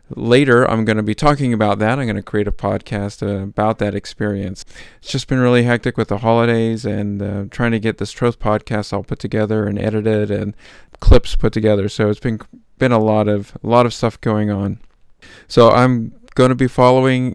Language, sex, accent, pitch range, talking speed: English, male, American, 100-120 Hz, 200 wpm